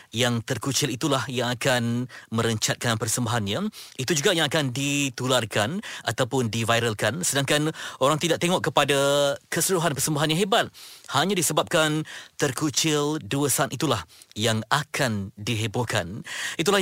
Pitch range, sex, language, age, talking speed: 120-155 Hz, male, Malay, 30-49, 120 wpm